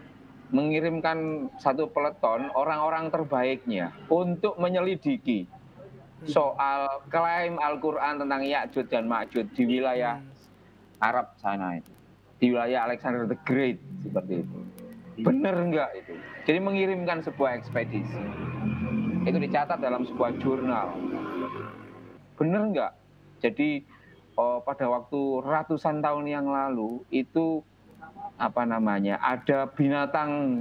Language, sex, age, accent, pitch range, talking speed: Indonesian, male, 30-49, native, 120-160 Hz, 105 wpm